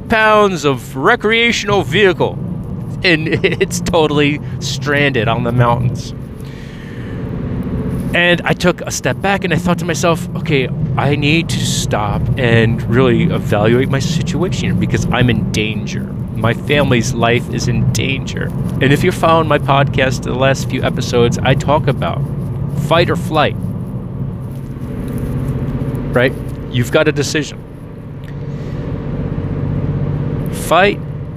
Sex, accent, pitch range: male, American, 120-150 Hz